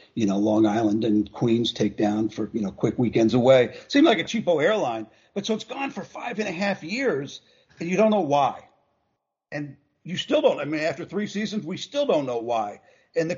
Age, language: 50-69, English